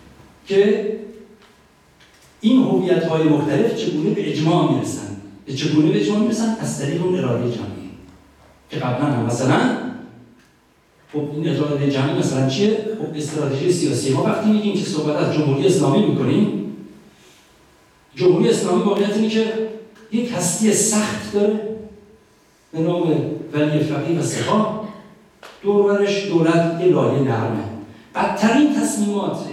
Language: Persian